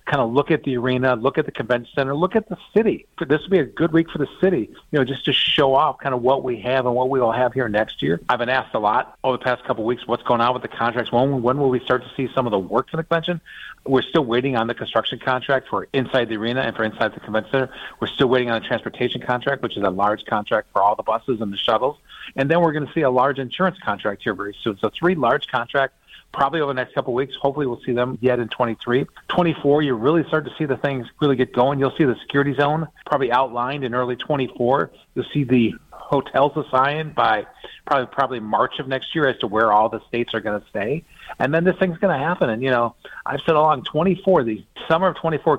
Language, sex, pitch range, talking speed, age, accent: English, male, 120-150 Hz, 265 wpm, 40-59, American